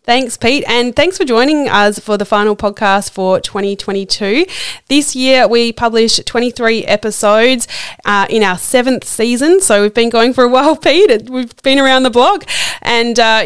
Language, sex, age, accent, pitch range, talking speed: English, female, 20-39, Australian, 180-235 Hz, 175 wpm